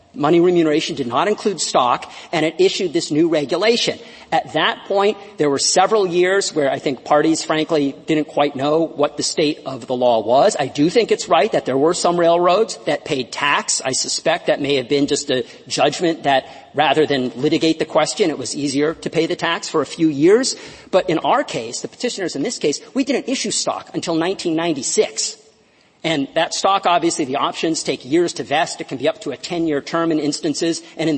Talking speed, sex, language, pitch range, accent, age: 210 wpm, male, English, 150-215 Hz, American, 40-59